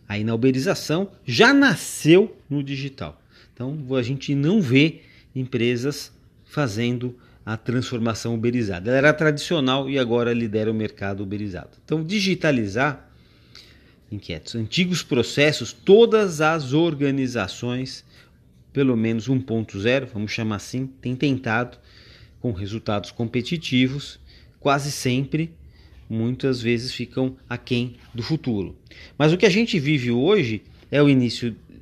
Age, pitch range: 30-49, 110-145 Hz